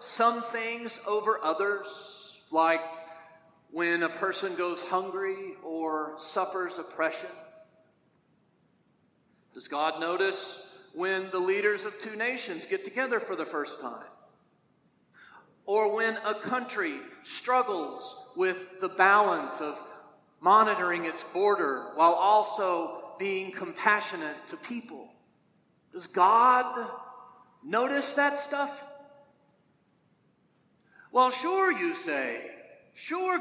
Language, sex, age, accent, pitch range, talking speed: English, male, 40-59, American, 180-255 Hz, 100 wpm